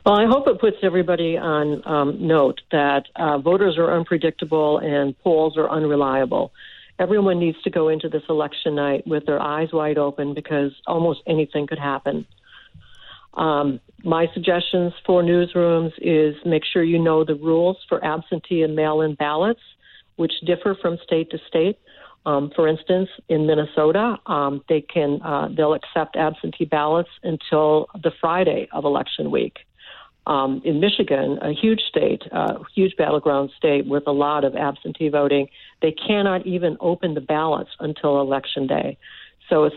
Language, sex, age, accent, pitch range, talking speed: English, female, 60-79, American, 145-175 Hz, 155 wpm